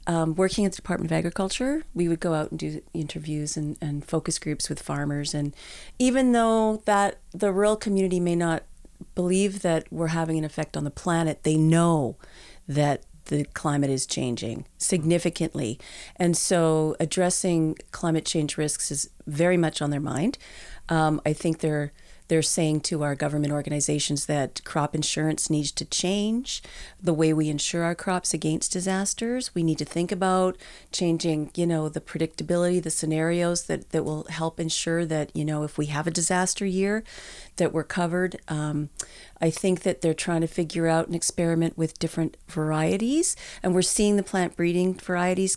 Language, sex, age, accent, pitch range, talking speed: English, female, 40-59, American, 155-180 Hz, 175 wpm